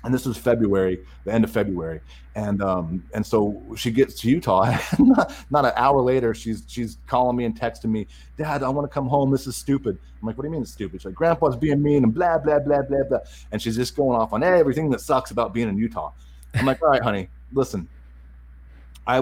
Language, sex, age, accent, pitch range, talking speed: English, male, 30-49, American, 100-150 Hz, 240 wpm